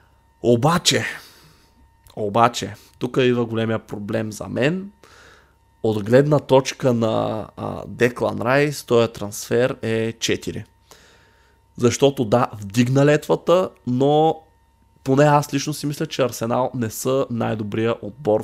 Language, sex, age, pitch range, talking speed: Bulgarian, male, 20-39, 110-135 Hz, 110 wpm